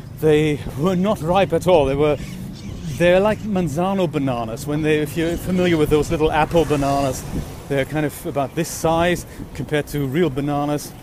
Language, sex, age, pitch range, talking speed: English, male, 40-59, 130-165 Hz, 175 wpm